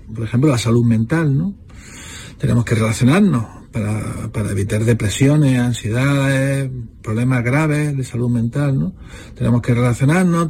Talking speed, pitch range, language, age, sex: 130 wpm, 120-150 Hz, Spanish, 40-59, male